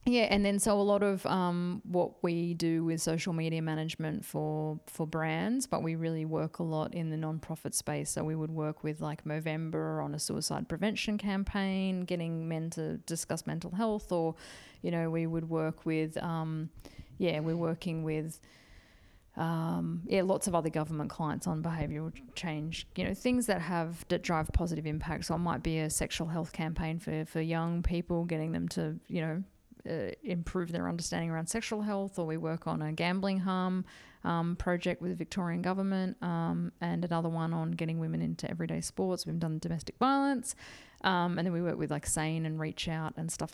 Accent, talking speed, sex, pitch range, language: Australian, 195 wpm, female, 155-175 Hz, English